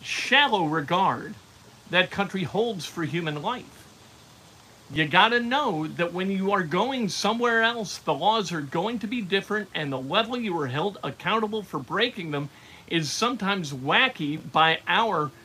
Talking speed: 160 wpm